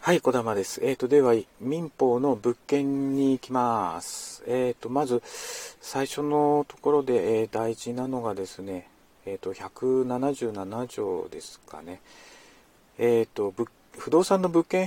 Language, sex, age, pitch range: Japanese, male, 40-59, 115-160 Hz